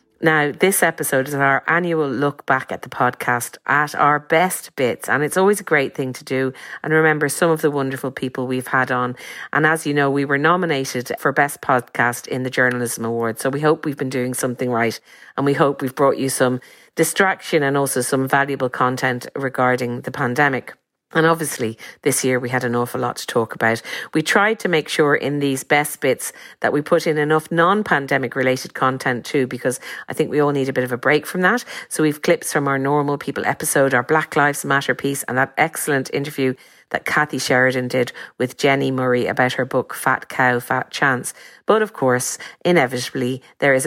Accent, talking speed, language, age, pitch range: Irish, 205 wpm, English, 50-69, 125-150 Hz